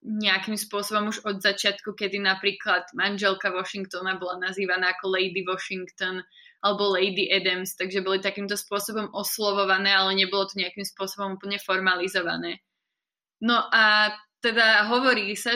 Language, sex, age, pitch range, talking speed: Slovak, female, 20-39, 195-230 Hz, 130 wpm